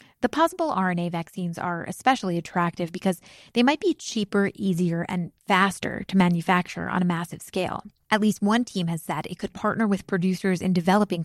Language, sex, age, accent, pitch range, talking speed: English, female, 20-39, American, 170-205 Hz, 180 wpm